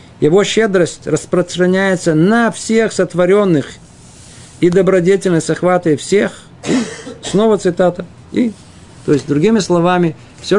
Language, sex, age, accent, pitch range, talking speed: Russian, male, 50-69, native, 145-195 Hz, 110 wpm